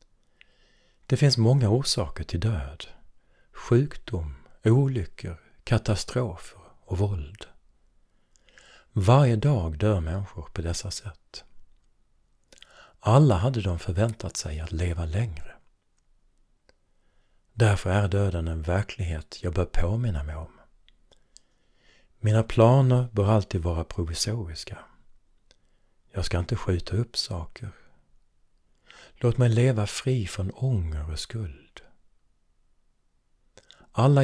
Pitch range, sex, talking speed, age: 85-115 Hz, male, 100 wpm, 60-79